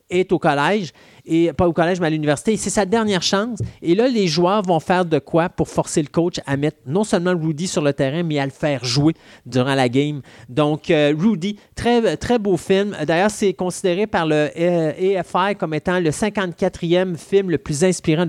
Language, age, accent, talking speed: French, 30-49, Canadian, 205 wpm